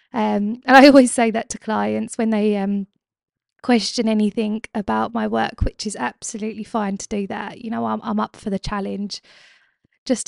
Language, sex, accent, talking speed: English, female, British, 185 wpm